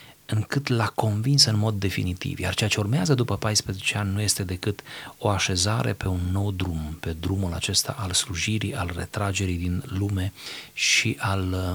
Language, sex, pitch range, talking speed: Romanian, male, 95-115 Hz, 170 wpm